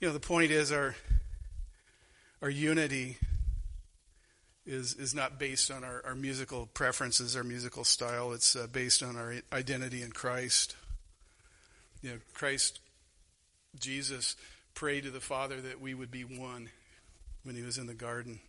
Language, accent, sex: English, American, male